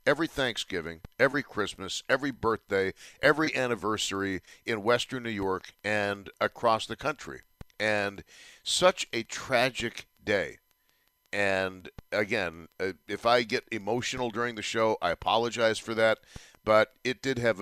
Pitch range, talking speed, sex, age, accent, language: 95-115 Hz, 130 wpm, male, 50-69, American, English